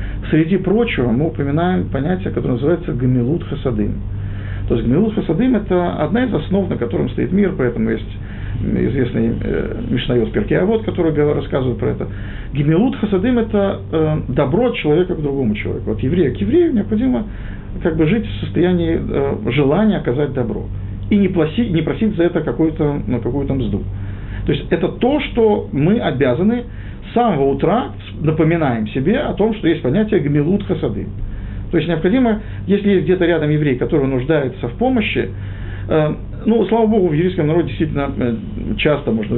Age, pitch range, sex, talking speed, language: 50-69, 110-175 Hz, male, 155 wpm, Russian